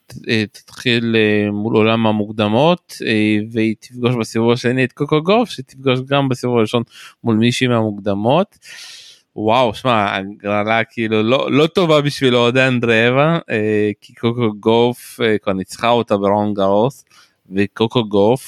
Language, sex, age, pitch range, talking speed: Hebrew, male, 20-39, 105-125 Hz, 125 wpm